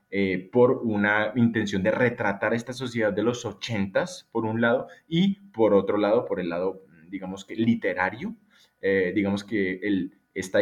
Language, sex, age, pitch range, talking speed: Spanish, male, 20-39, 100-130 Hz, 165 wpm